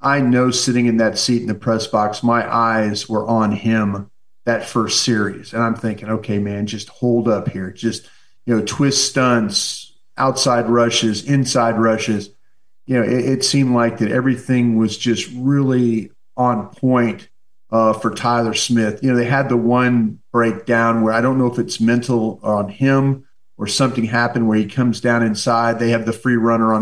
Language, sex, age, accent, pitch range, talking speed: English, male, 40-59, American, 110-120 Hz, 185 wpm